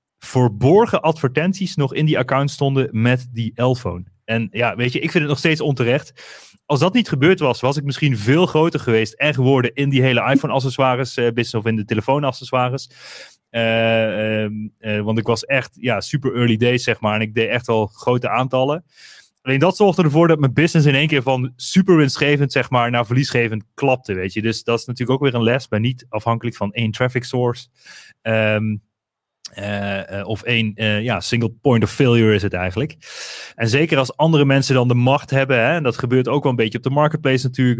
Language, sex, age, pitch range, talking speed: Dutch, male, 30-49, 115-145 Hz, 210 wpm